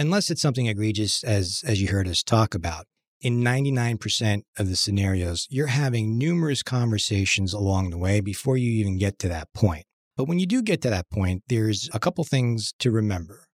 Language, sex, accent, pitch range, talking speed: English, male, American, 100-130 Hz, 195 wpm